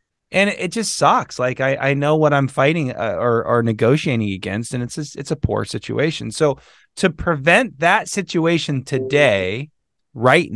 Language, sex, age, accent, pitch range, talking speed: English, male, 30-49, American, 120-155 Hz, 165 wpm